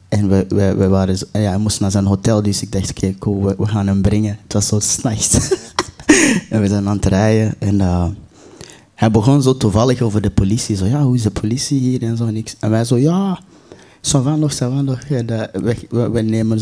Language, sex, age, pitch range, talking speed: Dutch, male, 20-39, 100-125 Hz, 215 wpm